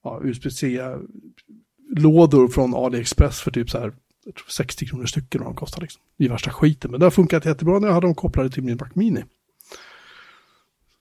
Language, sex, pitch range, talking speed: Swedish, male, 125-155 Hz, 175 wpm